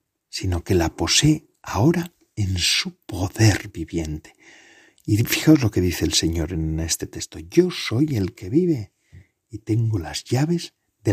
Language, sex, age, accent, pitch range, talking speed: Spanish, male, 50-69, Spanish, 85-120 Hz, 155 wpm